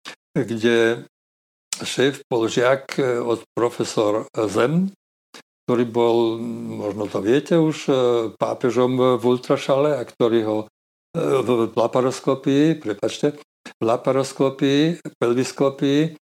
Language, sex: Slovak, male